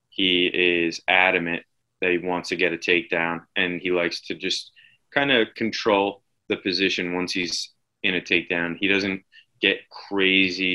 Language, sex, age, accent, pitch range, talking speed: English, male, 20-39, American, 90-95 Hz, 160 wpm